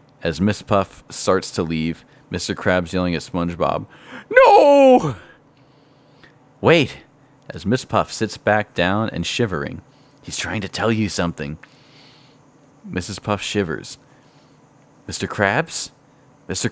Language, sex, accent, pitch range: English, male, American, 95-145 Hz